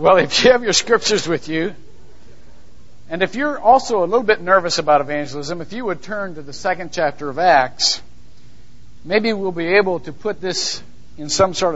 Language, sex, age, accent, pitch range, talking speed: English, male, 50-69, American, 150-210 Hz, 195 wpm